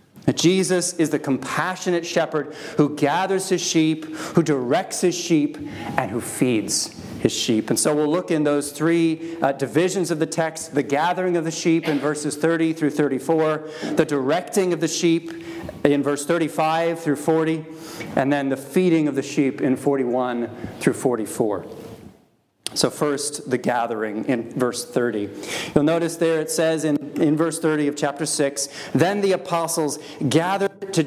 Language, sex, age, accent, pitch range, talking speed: English, male, 40-59, American, 145-175 Hz, 160 wpm